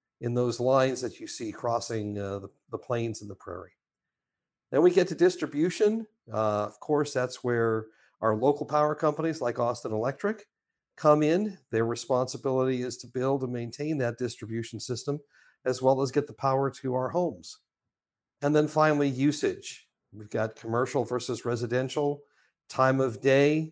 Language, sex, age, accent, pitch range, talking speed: English, male, 50-69, American, 115-150 Hz, 160 wpm